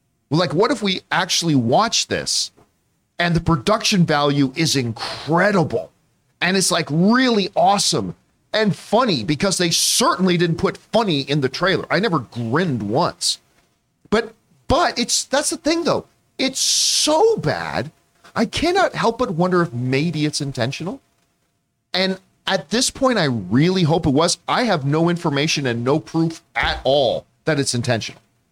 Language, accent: English, American